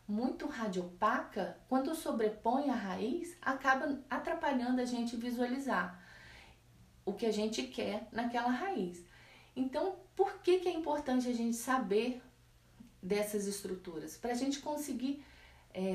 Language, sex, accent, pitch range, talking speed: Portuguese, female, Brazilian, 200-265 Hz, 130 wpm